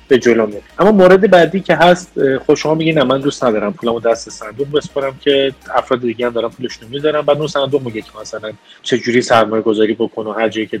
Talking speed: 215 wpm